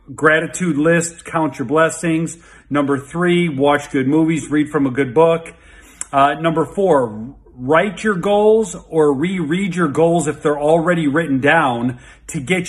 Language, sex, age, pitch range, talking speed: English, male, 40-59, 140-170 Hz, 150 wpm